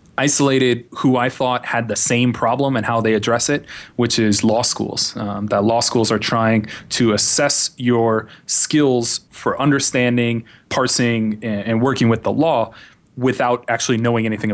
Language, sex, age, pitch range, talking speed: English, male, 20-39, 110-125 Hz, 160 wpm